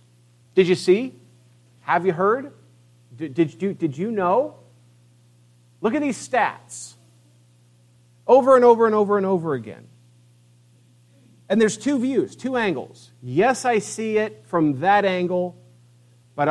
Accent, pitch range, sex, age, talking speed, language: American, 120-200 Hz, male, 50-69, 135 wpm, English